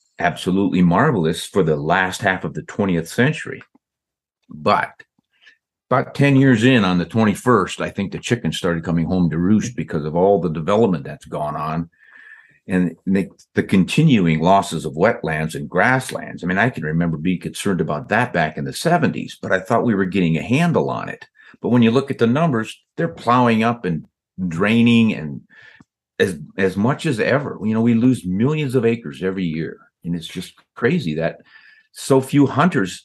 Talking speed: 185 wpm